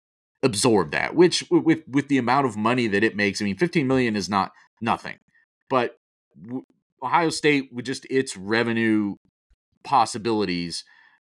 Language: English